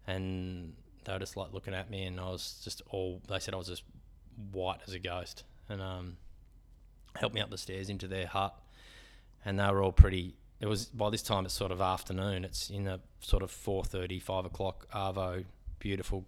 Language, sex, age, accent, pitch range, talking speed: English, male, 20-39, Australian, 90-100 Hz, 205 wpm